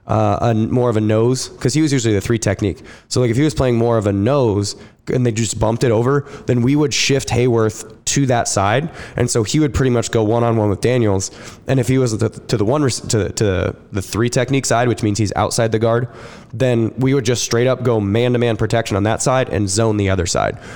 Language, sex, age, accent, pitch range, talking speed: English, male, 20-39, American, 110-125 Hz, 245 wpm